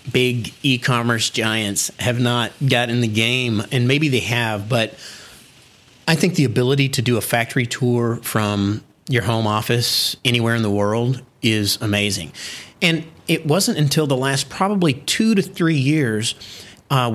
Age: 30-49